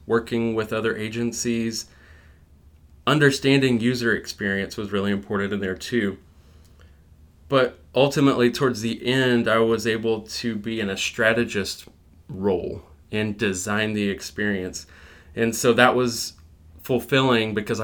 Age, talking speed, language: 20-39, 125 wpm, English